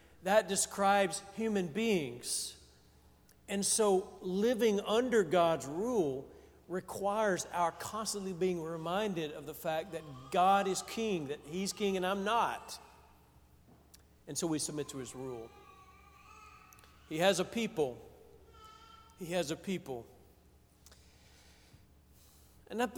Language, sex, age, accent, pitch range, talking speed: English, male, 50-69, American, 150-205 Hz, 115 wpm